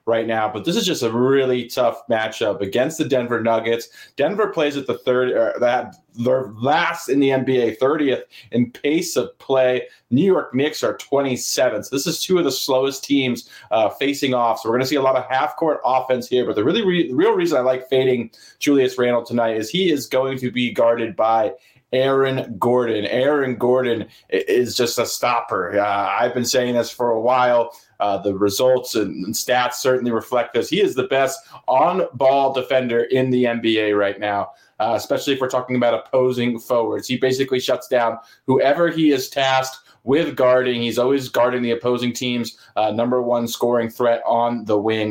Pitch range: 115-130 Hz